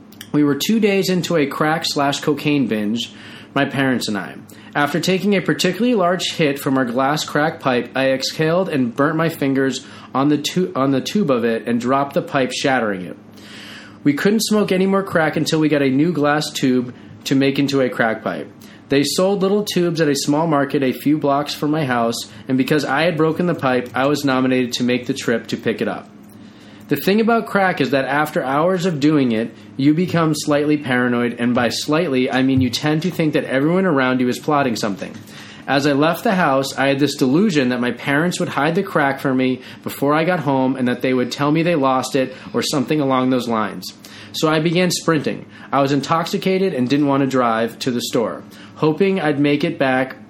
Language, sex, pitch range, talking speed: English, male, 130-160 Hz, 215 wpm